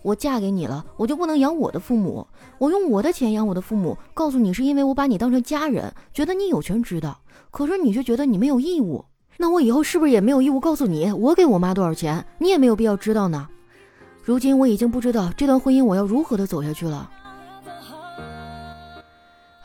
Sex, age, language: female, 20-39, Chinese